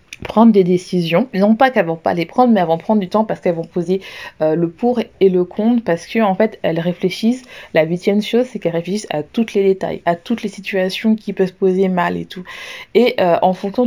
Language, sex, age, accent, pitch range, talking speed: French, female, 20-39, French, 175-220 Hz, 245 wpm